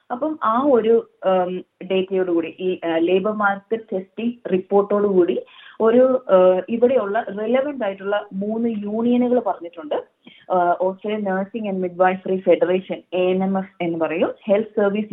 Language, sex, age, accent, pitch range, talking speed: Malayalam, female, 20-39, native, 180-230 Hz, 115 wpm